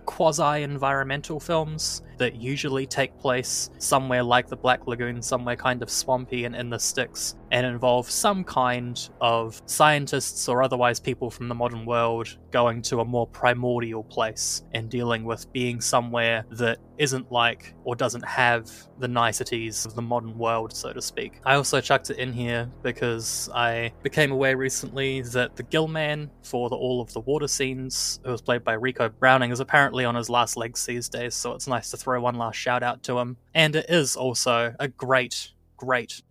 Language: English